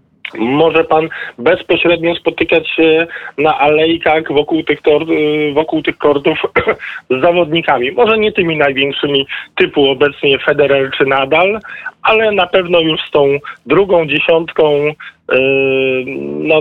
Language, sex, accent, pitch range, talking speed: Polish, male, native, 130-160 Hz, 110 wpm